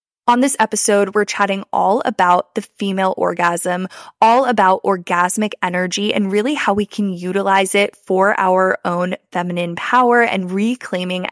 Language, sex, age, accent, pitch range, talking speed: English, female, 20-39, American, 190-225 Hz, 150 wpm